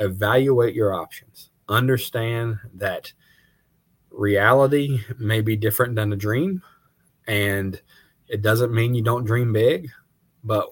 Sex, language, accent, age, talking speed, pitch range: male, English, American, 20-39, 120 wpm, 100-120 Hz